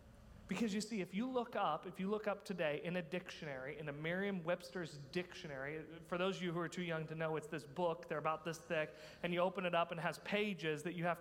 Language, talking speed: English, 255 wpm